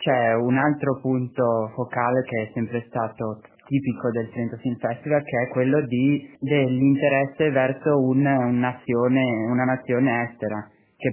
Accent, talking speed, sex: native, 135 wpm, male